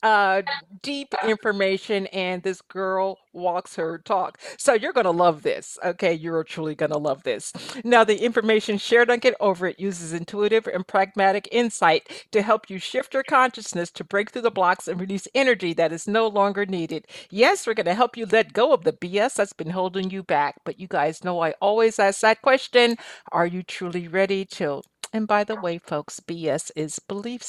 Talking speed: 200 wpm